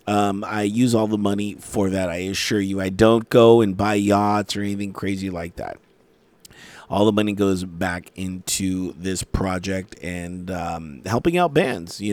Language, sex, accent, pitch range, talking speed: English, male, American, 100-140 Hz, 180 wpm